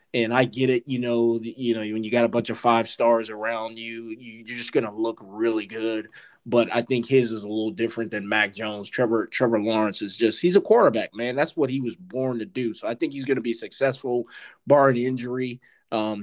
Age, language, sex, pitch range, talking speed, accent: 20-39, English, male, 115-130 Hz, 225 wpm, American